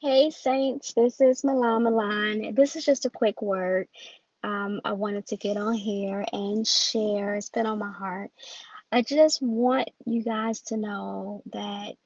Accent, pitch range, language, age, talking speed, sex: American, 200-235 Hz, English, 20-39, 170 wpm, female